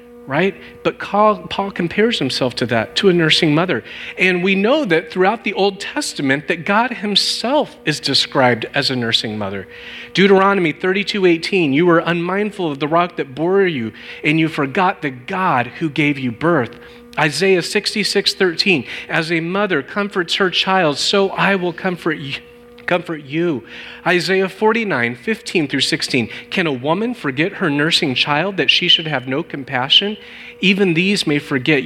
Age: 40-59